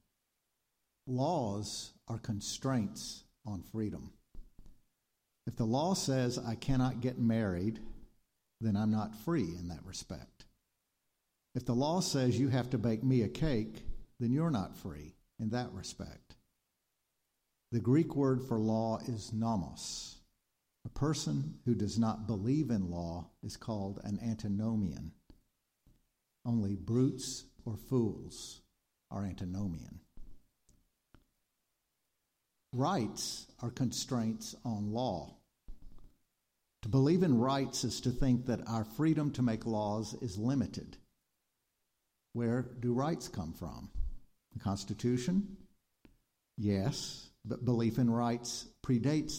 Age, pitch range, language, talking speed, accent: 50-69, 105-130 Hz, English, 115 wpm, American